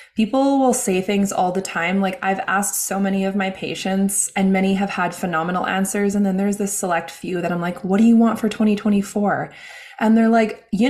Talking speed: 220 wpm